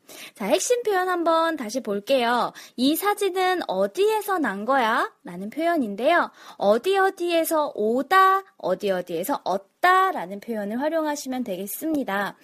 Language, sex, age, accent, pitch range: Korean, female, 20-39, native, 210-345 Hz